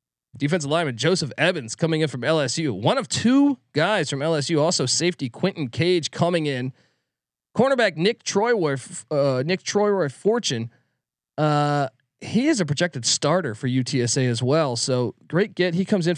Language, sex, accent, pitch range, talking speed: English, male, American, 135-180 Hz, 165 wpm